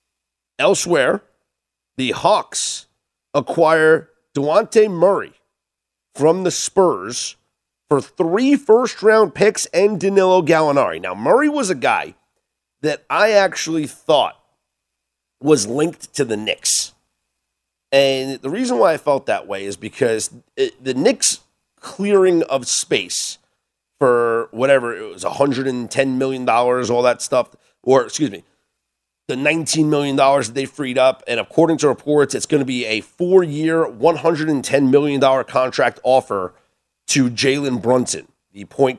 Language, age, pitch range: English, 40-59, 115-160 Hz